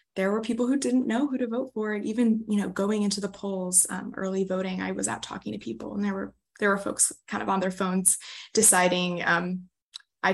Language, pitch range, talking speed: English, 180-205 Hz, 240 wpm